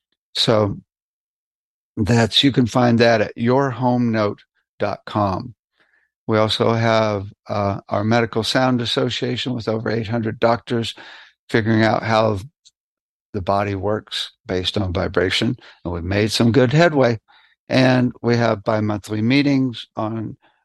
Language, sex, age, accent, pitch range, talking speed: English, male, 60-79, American, 105-125 Hz, 120 wpm